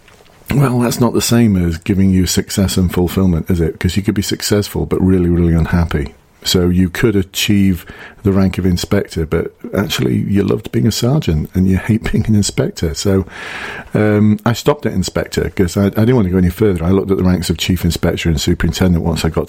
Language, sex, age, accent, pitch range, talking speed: English, male, 40-59, British, 90-105 Hz, 220 wpm